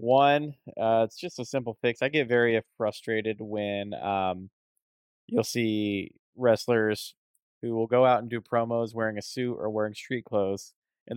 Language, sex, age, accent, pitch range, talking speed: English, male, 20-39, American, 105-130 Hz, 165 wpm